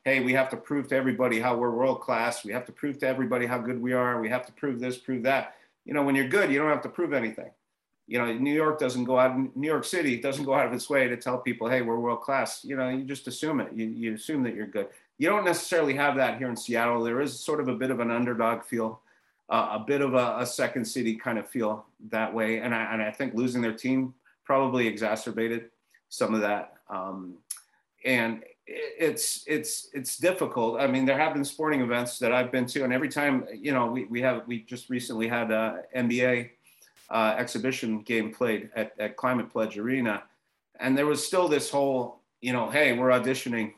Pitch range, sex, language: 115-135 Hz, male, English